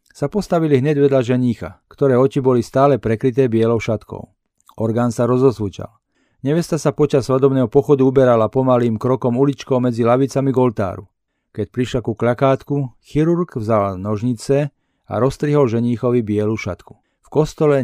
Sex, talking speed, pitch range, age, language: male, 140 wpm, 115-140 Hz, 40-59, Slovak